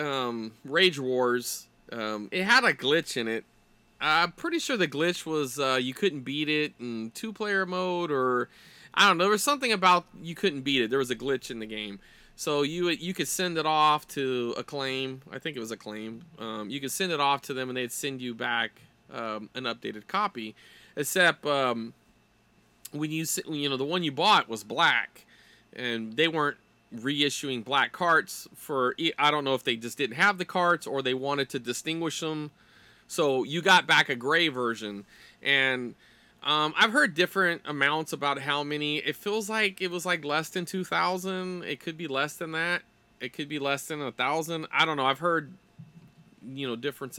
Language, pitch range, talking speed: English, 125-165 Hz, 200 wpm